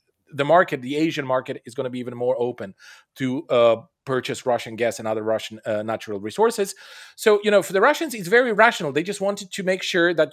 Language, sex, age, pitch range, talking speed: English, male, 40-59, 135-200 Hz, 225 wpm